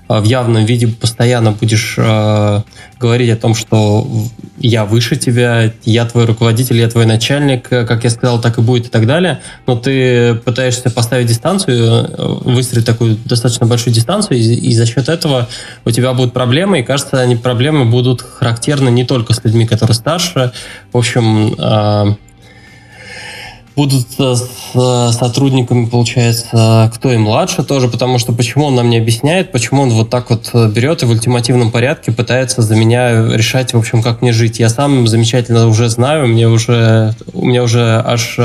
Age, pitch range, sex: 20-39, 115-125 Hz, male